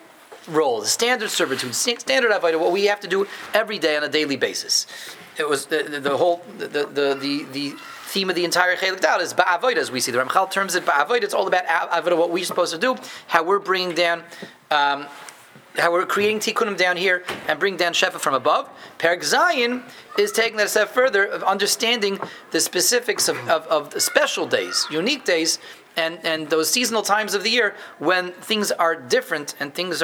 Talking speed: 200 wpm